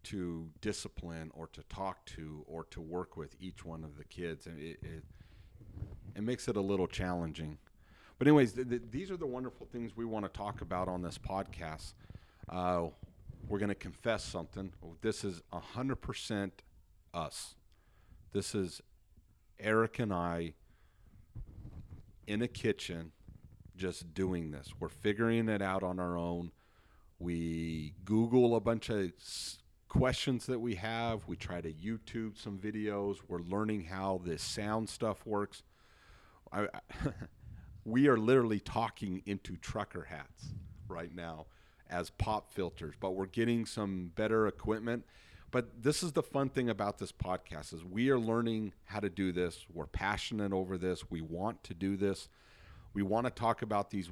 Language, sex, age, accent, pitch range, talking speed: English, male, 40-59, American, 85-110 Hz, 155 wpm